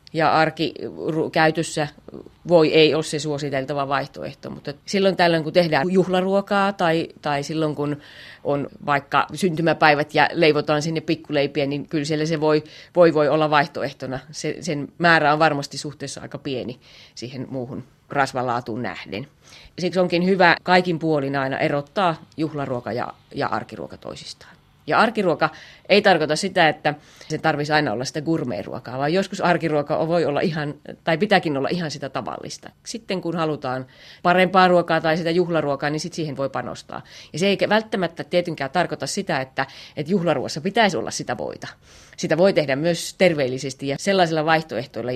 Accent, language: native, Finnish